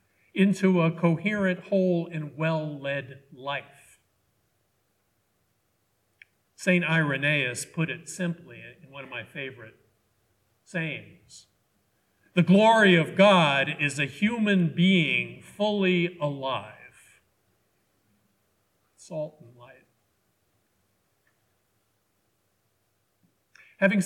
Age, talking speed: 50-69, 80 wpm